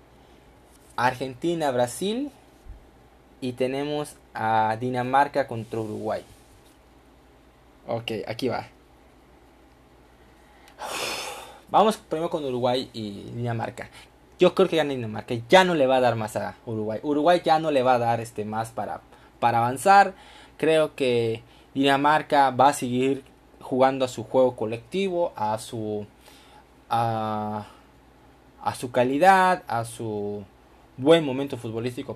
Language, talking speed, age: Spanish, 120 wpm, 20-39